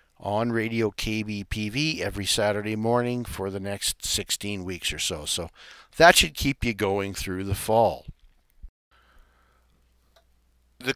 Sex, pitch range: male, 85-115 Hz